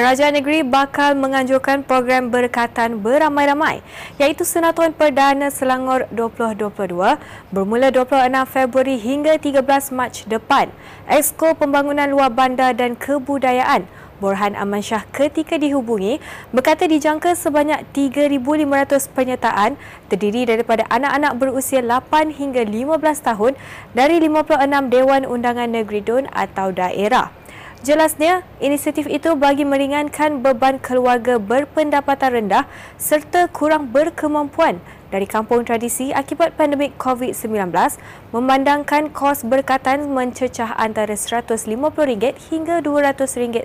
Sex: female